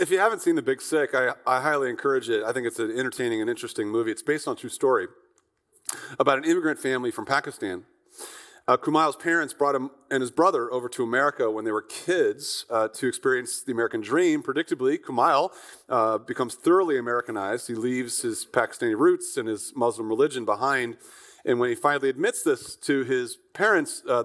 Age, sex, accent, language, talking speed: 40-59, male, American, English, 195 wpm